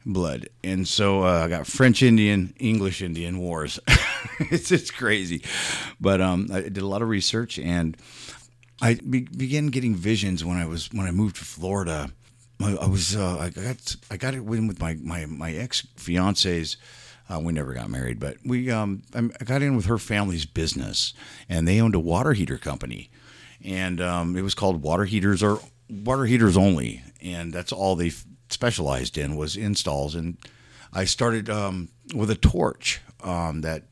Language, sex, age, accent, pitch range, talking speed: English, male, 50-69, American, 85-110 Hz, 180 wpm